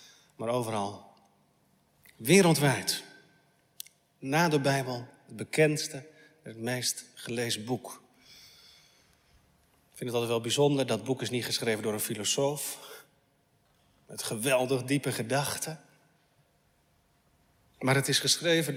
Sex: male